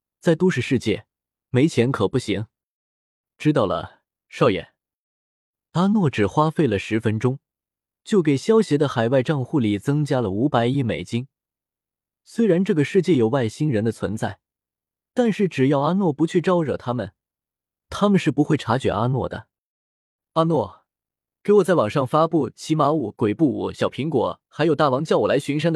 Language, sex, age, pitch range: Chinese, male, 20-39, 115-170 Hz